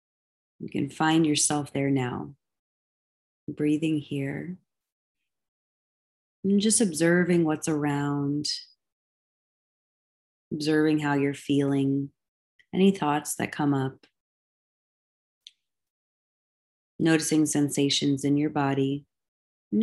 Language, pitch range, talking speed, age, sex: English, 145-170 Hz, 85 wpm, 30-49, female